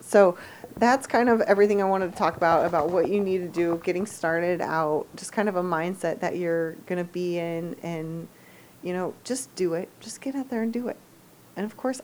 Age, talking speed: 30-49, 230 wpm